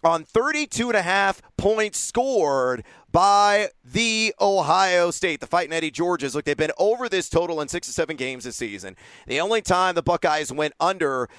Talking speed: 190 wpm